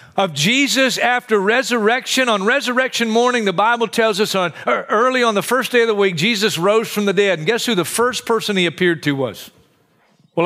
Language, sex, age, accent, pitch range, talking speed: English, male, 40-59, American, 150-210 Hz, 205 wpm